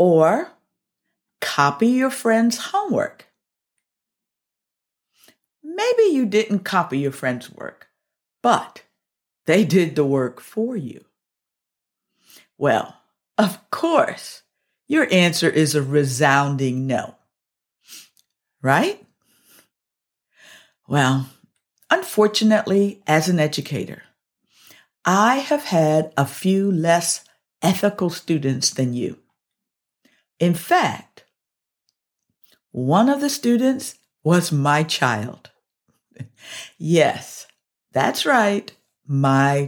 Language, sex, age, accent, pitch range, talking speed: English, female, 50-69, American, 140-220 Hz, 85 wpm